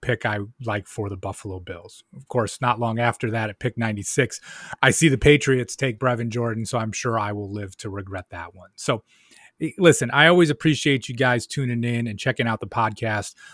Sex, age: male, 30-49